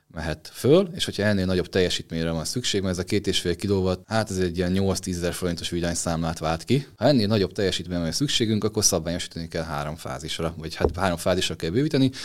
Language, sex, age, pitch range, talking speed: Hungarian, male, 30-49, 85-100 Hz, 215 wpm